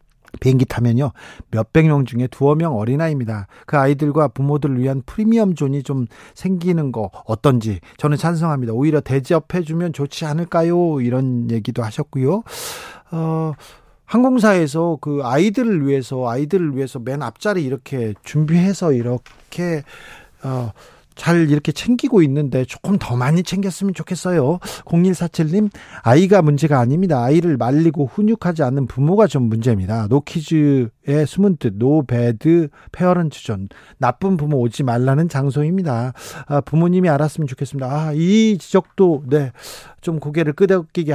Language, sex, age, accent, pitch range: Korean, male, 40-59, native, 130-175 Hz